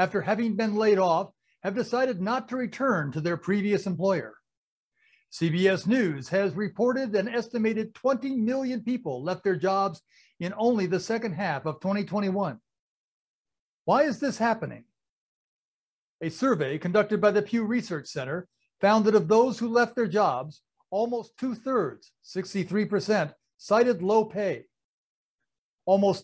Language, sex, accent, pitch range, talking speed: English, male, American, 180-230 Hz, 135 wpm